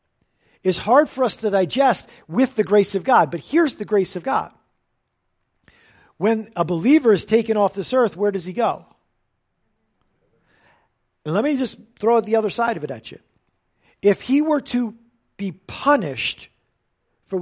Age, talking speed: 50-69, 165 wpm